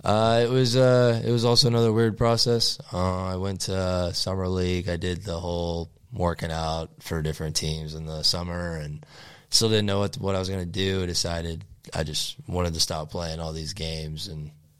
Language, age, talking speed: English, 20-39, 210 wpm